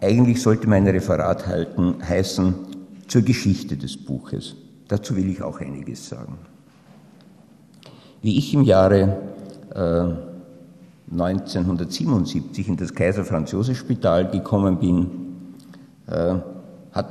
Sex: male